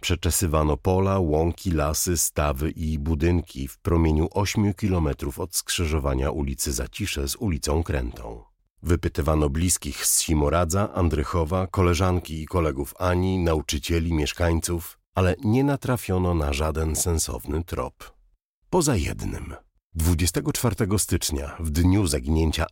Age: 40-59